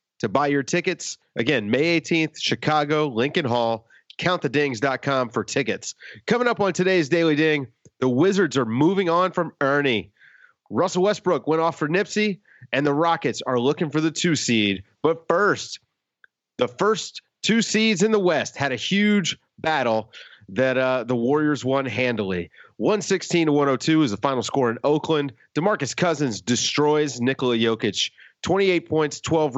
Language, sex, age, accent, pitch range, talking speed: English, male, 30-49, American, 130-175 Hz, 155 wpm